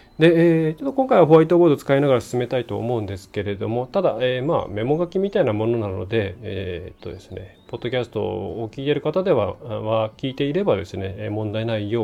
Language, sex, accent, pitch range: Japanese, male, native, 105-145 Hz